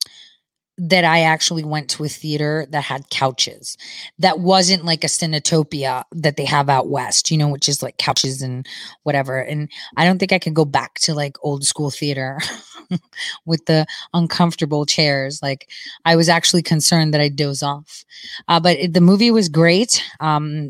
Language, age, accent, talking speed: English, 30-49, American, 180 wpm